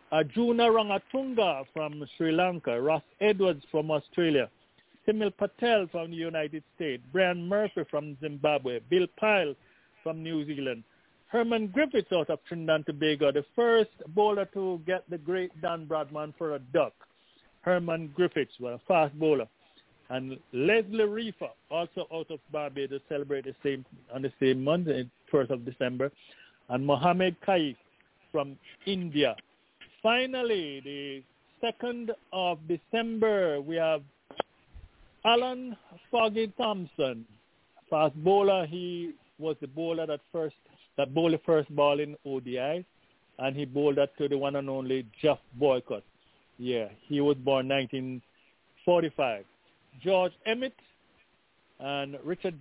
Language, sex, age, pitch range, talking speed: English, male, 50-69, 140-190 Hz, 130 wpm